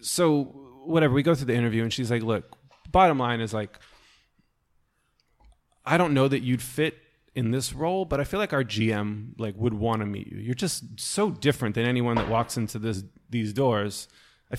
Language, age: English, 20-39